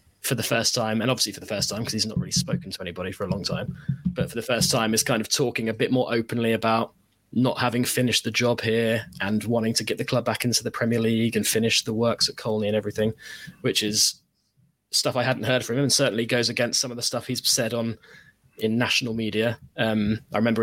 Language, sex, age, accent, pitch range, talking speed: English, male, 20-39, British, 110-125 Hz, 245 wpm